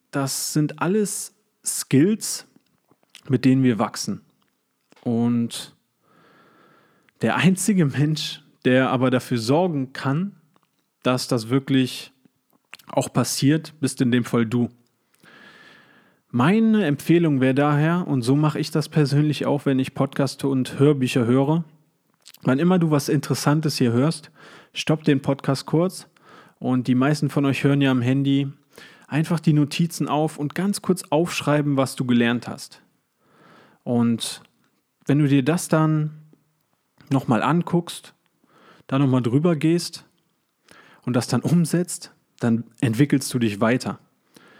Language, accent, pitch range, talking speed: German, German, 125-155 Hz, 130 wpm